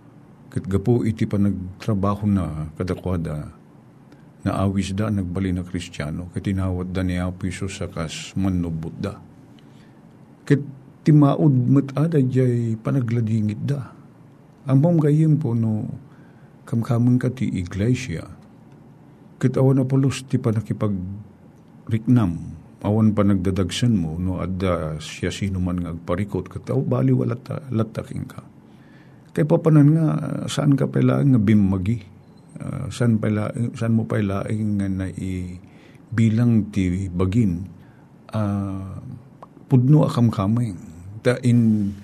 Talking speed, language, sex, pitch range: 115 wpm, Filipino, male, 95-130 Hz